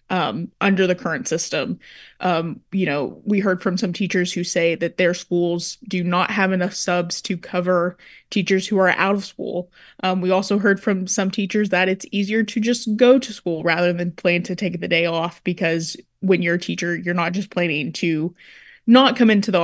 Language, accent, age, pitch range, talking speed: English, American, 20-39, 175-210 Hz, 210 wpm